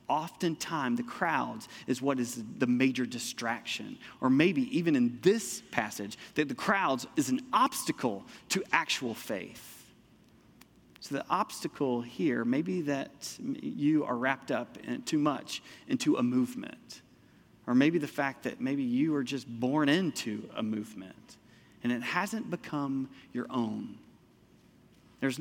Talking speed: 140 wpm